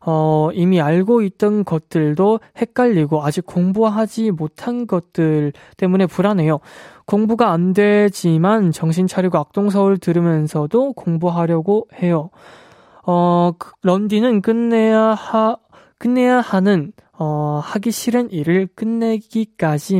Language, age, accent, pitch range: Korean, 20-39, native, 160-220 Hz